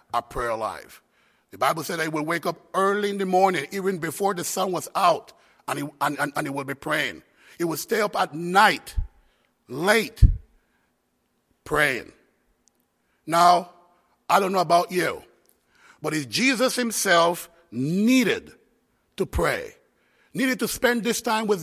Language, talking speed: English, 160 wpm